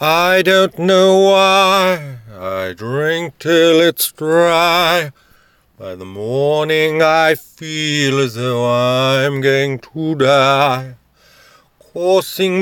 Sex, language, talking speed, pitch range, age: male, English, 100 wpm, 125-160 Hz, 40-59